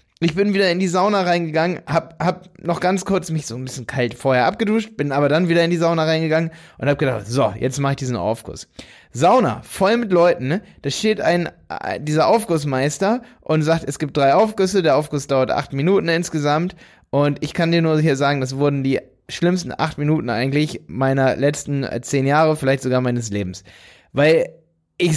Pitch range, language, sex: 135-170 Hz, German, male